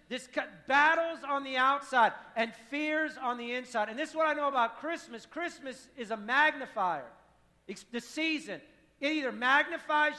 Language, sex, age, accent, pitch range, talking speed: English, male, 50-69, American, 220-285 Hz, 165 wpm